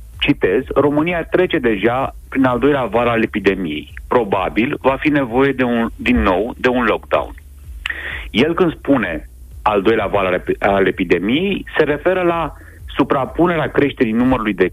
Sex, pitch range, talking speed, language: male, 100-150 Hz, 150 wpm, Romanian